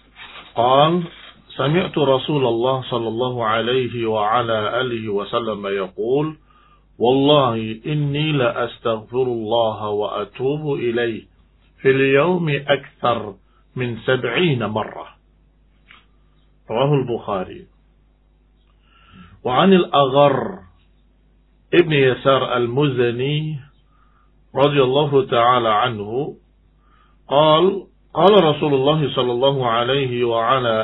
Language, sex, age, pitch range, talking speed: Indonesian, male, 50-69, 115-140 Hz, 80 wpm